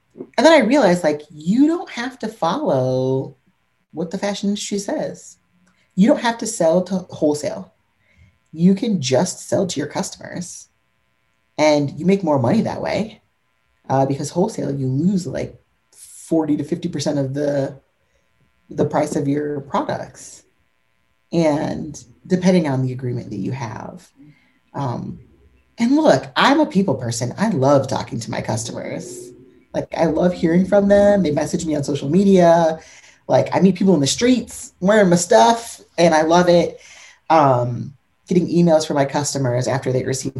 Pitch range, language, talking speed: 130-185 Hz, English, 160 wpm